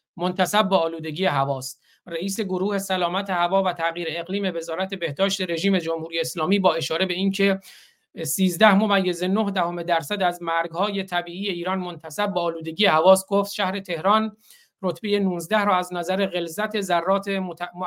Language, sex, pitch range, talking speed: Persian, male, 170-195 Hz, 150 wpm